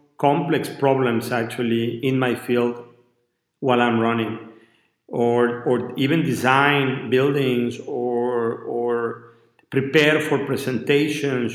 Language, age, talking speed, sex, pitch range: English, 50-69, 100 wpm, male, 120-140 Hz